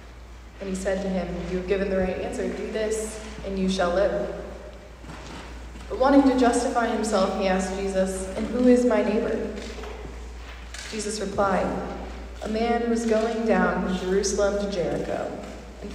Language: English